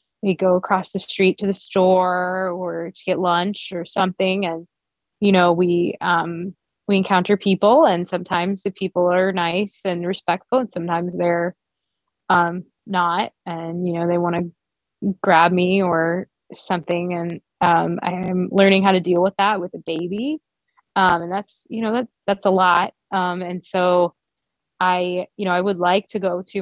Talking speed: 180 wpm